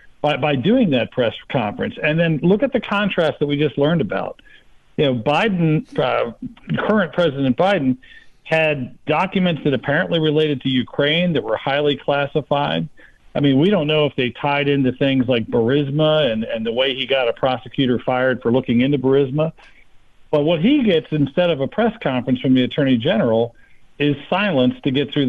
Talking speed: 185 wpm